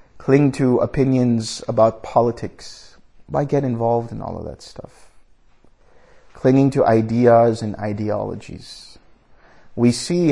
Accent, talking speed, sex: American, 115 wpm, male